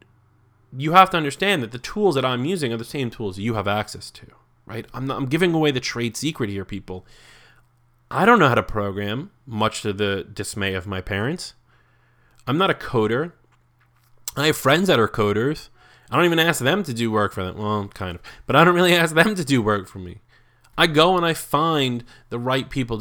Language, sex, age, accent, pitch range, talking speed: English, male, 30-49, American, 105-125 Hz, 215 wpm